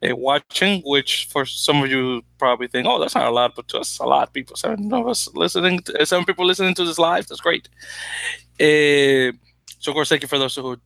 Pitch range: 125-155 Hz